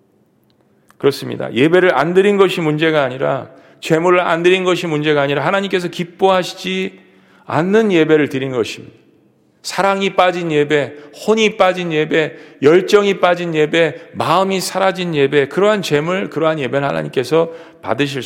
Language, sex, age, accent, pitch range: Korean, male, 40-59, native, 140-185 Hz